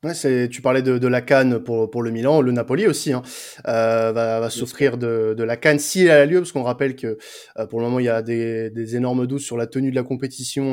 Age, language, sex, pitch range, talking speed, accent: 20-39, French, male, 120-145 Hz, 275 wpm, French